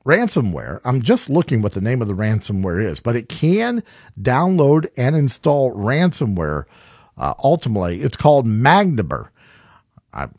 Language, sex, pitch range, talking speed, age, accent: English, male, 90-135 Hz, 140 wpm, 50-69, American